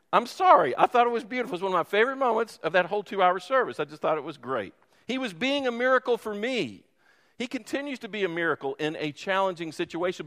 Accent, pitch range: American, 150-230 Hz